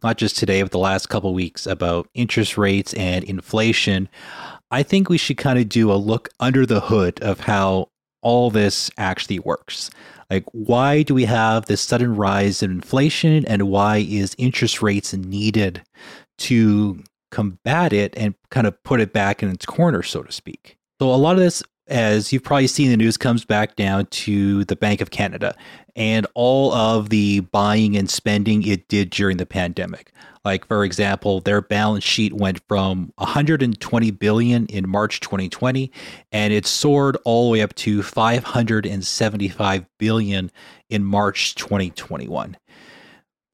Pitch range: 100-120 Hz